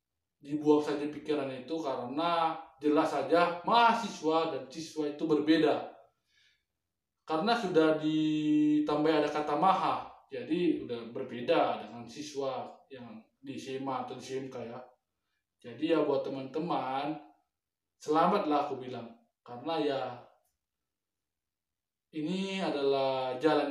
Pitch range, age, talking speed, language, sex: 135-160 Hz, 20-39, 105 wpm, Indonesian, male